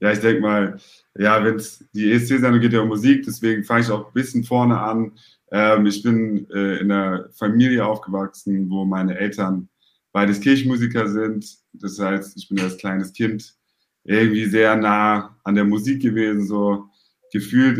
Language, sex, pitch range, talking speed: German, male, 100-115 Hz, 175 wpm